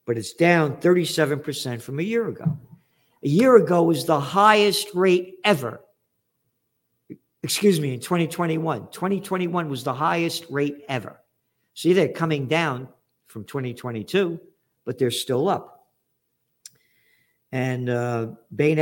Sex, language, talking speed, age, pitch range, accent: male, English, 125 wpm, 50-69, 130-165 Hz, American